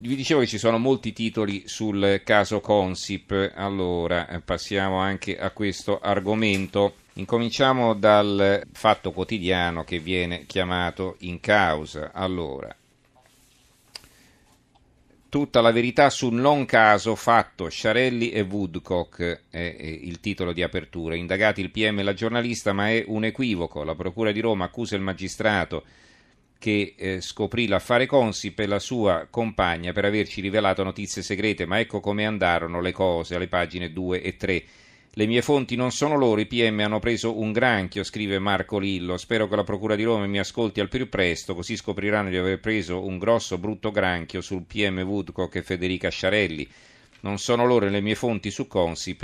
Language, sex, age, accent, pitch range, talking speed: Italian, male, 40-59, native, 90-110 Hz, 160 wpm